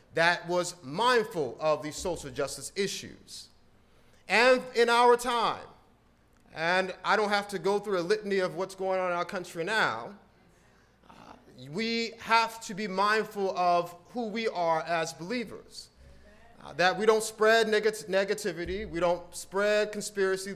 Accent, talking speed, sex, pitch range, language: American, 150 wpm, male, 175-215 Hz, English